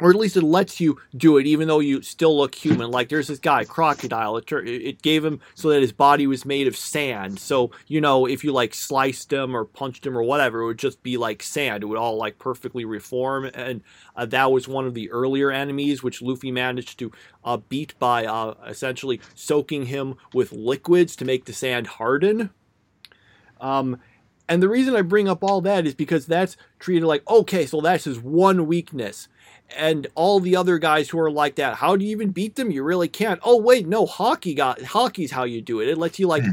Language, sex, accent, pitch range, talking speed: English, male, American, 135-180 Hz, 220 wpm